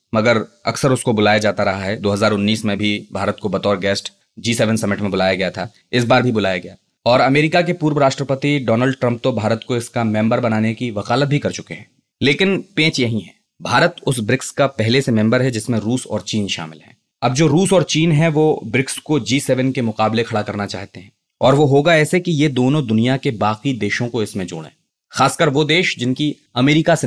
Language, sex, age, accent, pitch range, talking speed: Hindi, male, 20-39, native, 110-140 Hz, 220 wpm